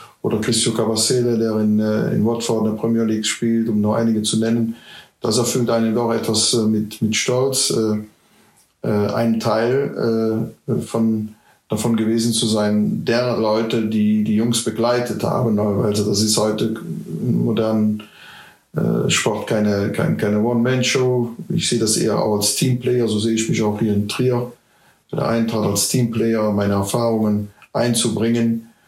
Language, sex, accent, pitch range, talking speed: German, male, German, 105-115 Hz, 160 wpm